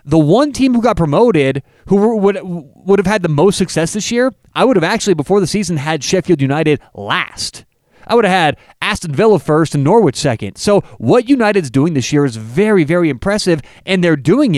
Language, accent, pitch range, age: English, American, 135-195 Hz, 30-49